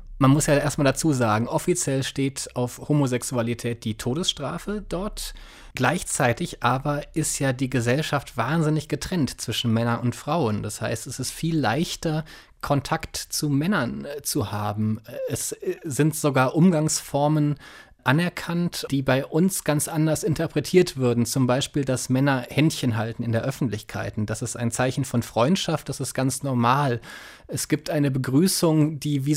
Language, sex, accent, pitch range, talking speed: German, male, German, 125-155 Hz, 150 wpm